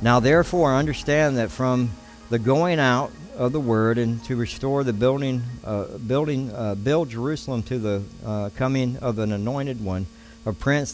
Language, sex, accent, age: English, male, American, 60-79